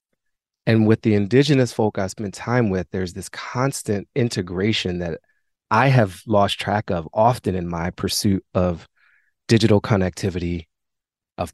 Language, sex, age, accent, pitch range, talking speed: English, male, 30-49, American, 95-115 Hz, 140 wpm